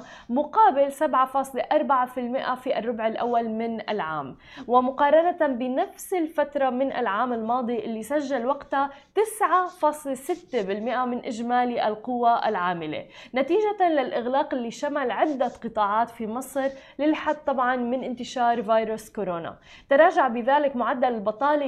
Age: 10-29